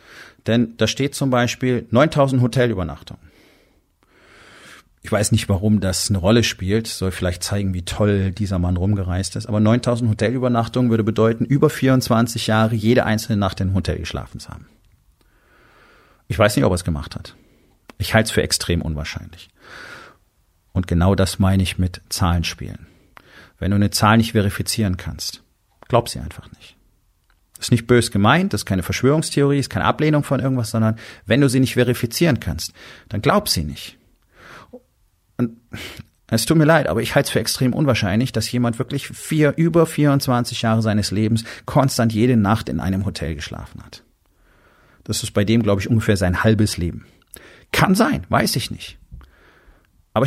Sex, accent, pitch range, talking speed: male, German, 95-120 Hz, 175 wpm